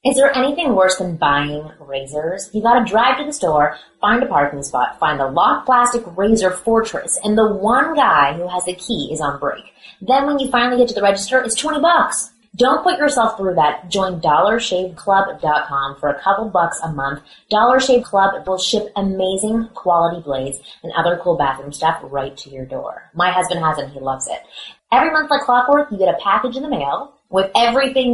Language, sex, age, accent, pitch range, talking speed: English, female, 20-39, American, 160-245 Hz, 205 wpm